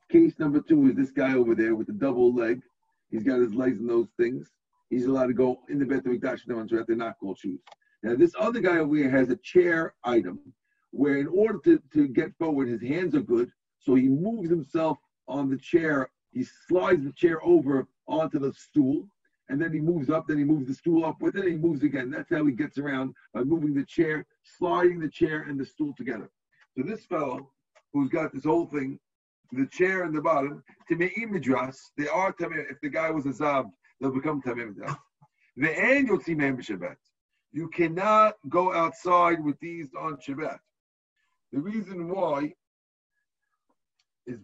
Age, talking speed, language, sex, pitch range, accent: 50-69, 190 wpm, English, male, 140-215 Hz, American